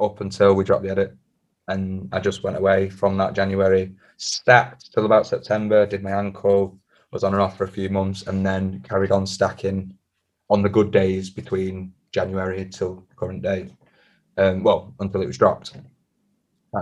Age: 20-39